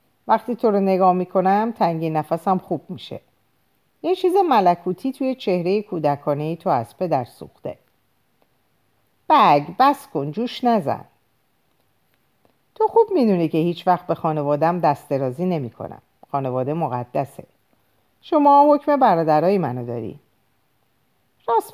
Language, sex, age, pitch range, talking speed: Persian, female, 50-69, 145-215 Hz, 120 wpm